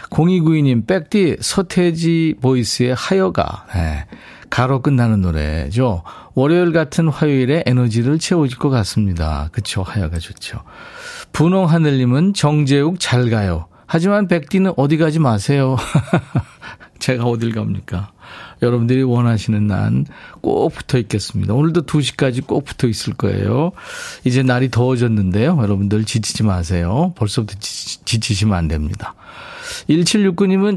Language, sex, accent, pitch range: Korean, male, native, 100-165 Hz